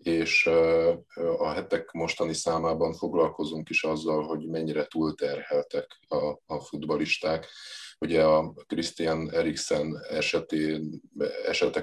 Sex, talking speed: male, 95 wpm